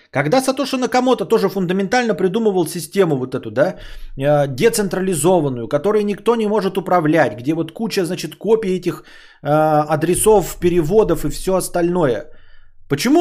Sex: male